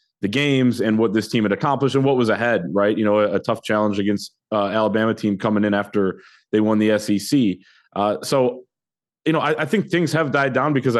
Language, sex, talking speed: English, male, 230 wpm